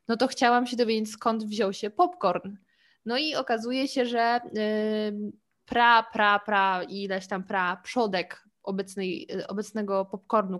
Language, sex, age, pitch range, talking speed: Polish, female, 20-39, 205-255 Hz, 135 wpm